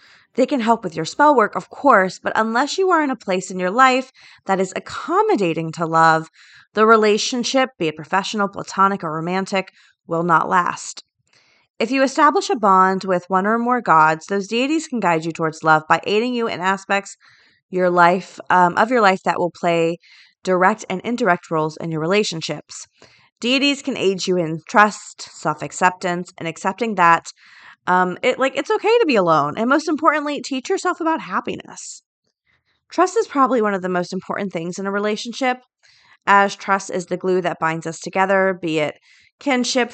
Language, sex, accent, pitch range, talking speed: English, female, American, 175-235 Hz, 180 wpm